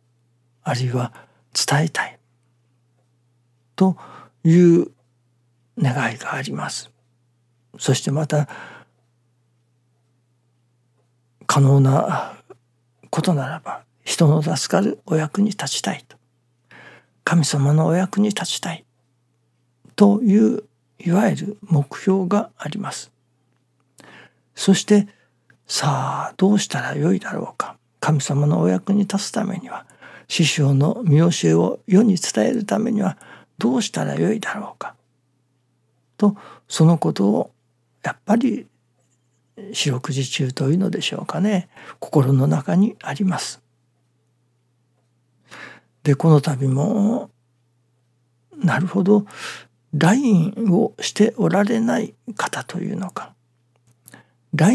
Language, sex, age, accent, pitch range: Japanese, male, 60-79, native, 120-190 Hz